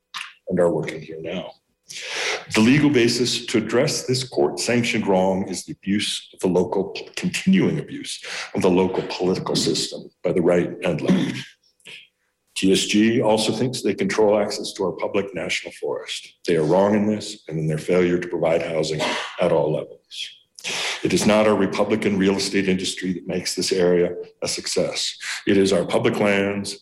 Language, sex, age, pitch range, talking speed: English, male, 60-79, 95-115 Hz, 170 wpm